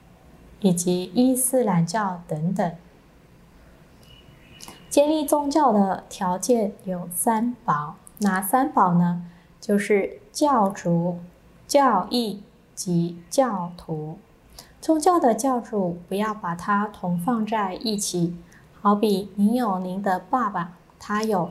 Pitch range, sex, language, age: 175-235 Hz, female, Chinese, 20-39